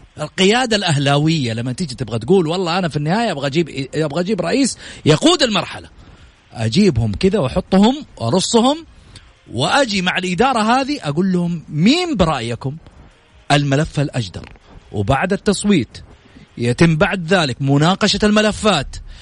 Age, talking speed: 40-59, 115 wpm